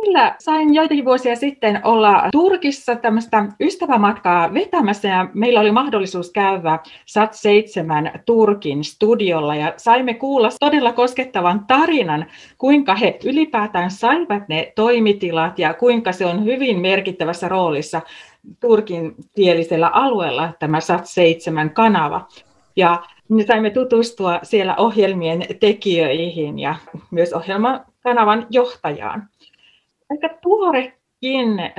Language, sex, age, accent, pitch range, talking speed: Finnish, female, 30-49, native, 180-255 Hz, 100 wpm